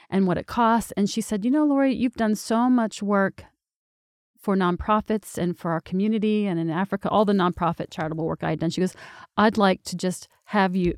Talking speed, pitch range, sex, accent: 220 wpm, 185-235 Hz, female, American